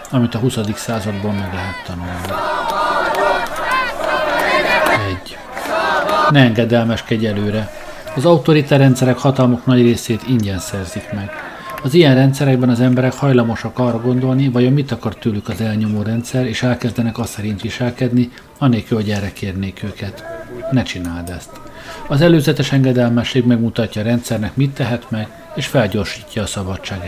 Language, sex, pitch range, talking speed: Hungarian, male, 105-130 Hz, 135 wpm